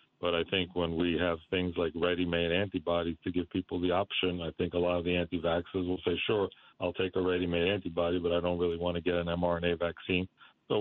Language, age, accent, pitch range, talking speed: English, 40-59, American, 85-95 Hz, 230 wpm